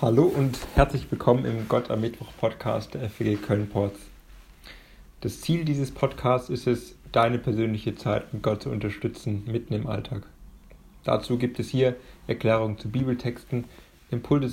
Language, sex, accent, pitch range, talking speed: German, male, German, 110-130 Hz, 150 wpm